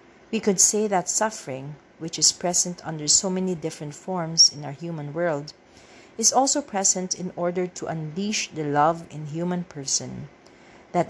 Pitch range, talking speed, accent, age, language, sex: 150-185 Hz, 160 wpm, Filipino, 40-59, English, female